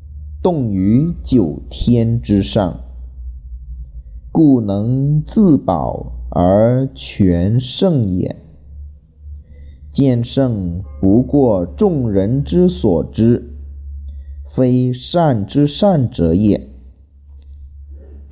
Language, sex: Chinese, male